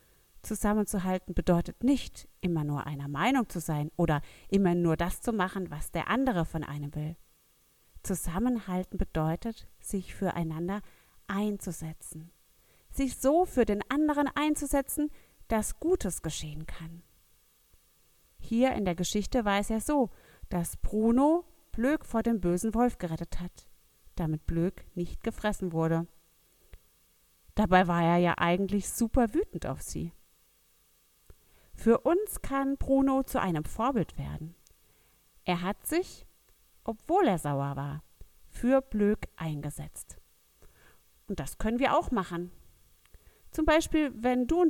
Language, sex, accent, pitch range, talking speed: German, female, German, 175-270 Hz, 130 wpm